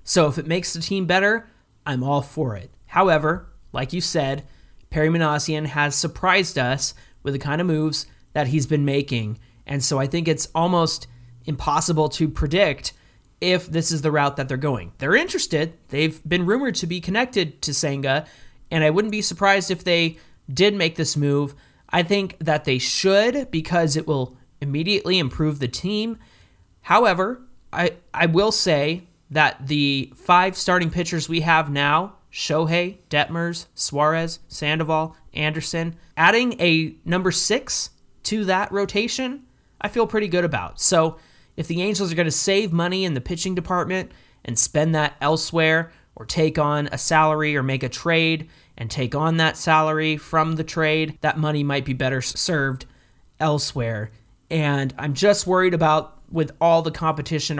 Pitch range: 140-175 Hz